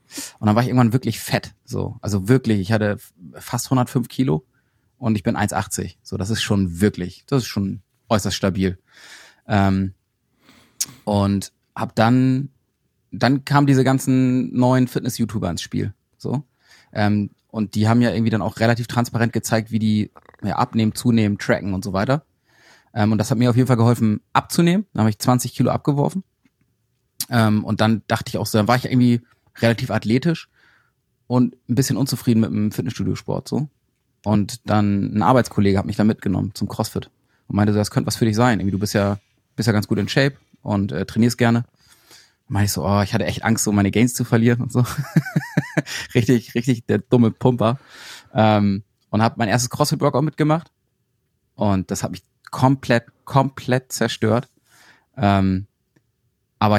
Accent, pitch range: German, 105-125 Hz